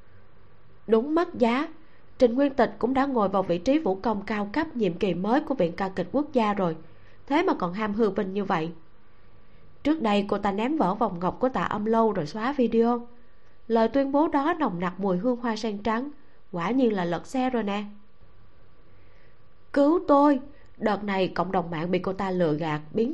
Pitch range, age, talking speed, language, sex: 190-255 Hz, 20-39, 205 wpm, Vietnamese, female